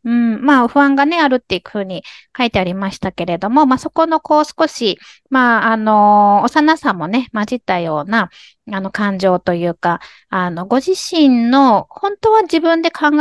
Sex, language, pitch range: female, Japanese, 195-285 Hz